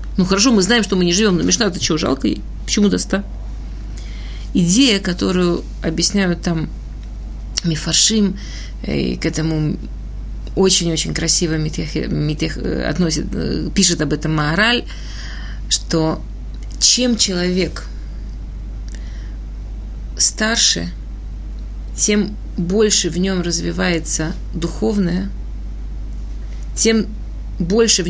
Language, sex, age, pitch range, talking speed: Russian, female, 30-49, 170-210 Hz, 100 wpm